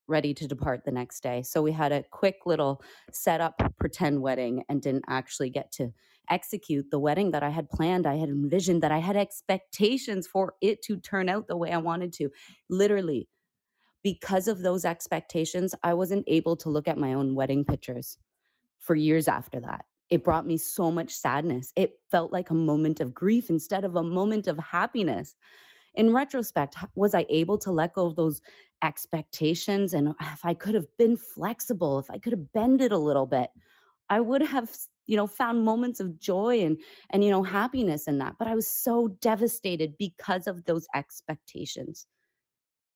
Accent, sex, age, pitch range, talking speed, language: American, female, 30-49, 150-200 Hz, 190 wpm, English